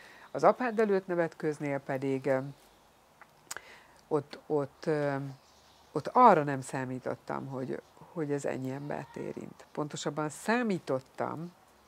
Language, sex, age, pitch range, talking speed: Hungarian, female, 60-79, 145-175 Hz, 95 wpm